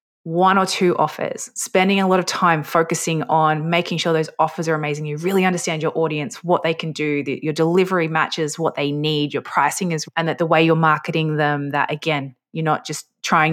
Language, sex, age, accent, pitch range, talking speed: English, female, 20-39, Australian, 155-190 Hz, 215 wpm